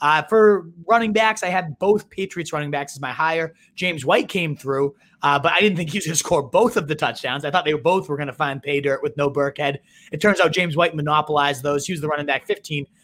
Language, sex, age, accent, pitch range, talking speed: English, male, 30-49, American, 145-180 Hz, 260 wpm